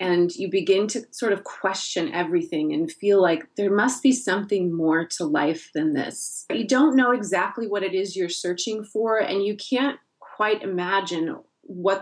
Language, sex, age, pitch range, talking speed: English, female, 30-49, 175-210 Hz, 180 wpm